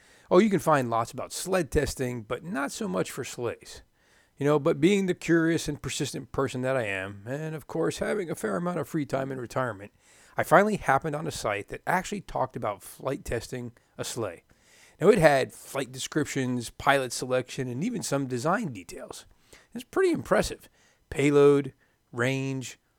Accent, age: American, 40-59